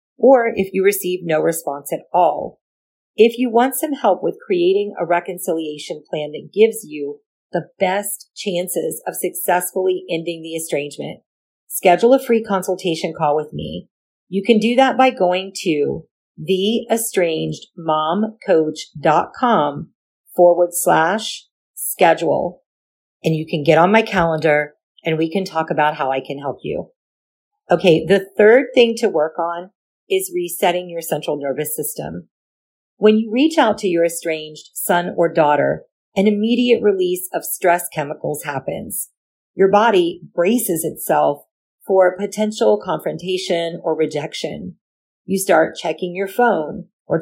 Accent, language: American, English